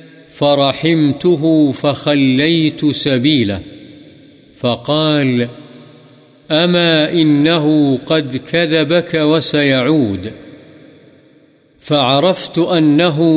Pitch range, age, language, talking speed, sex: 140-160 Hz, 50-69, Urdu, 50 wpm, male